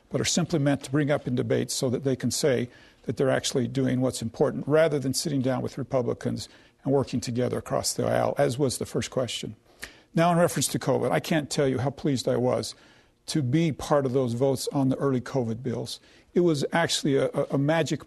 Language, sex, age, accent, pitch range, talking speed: English, male, 50-69, American, 130-155 Hz, 225 wpm